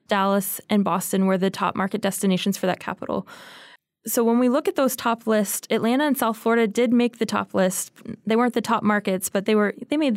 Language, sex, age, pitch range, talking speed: English, female, 20-39, 195-230 Hz, 225 wpm